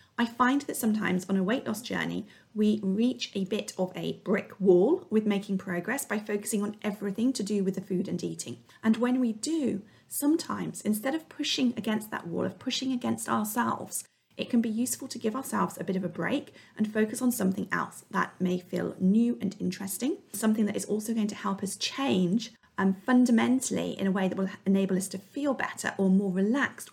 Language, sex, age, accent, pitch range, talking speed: English, female, 40-59, British, 190-235 Hz, 205 wpm